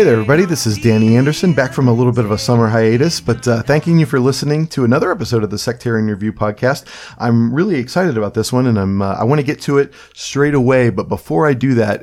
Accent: American